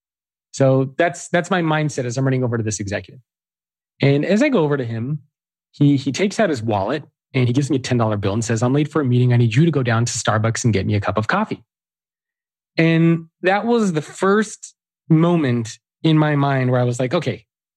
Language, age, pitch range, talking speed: English, 30-49, 125-170 Hz, 230 wpm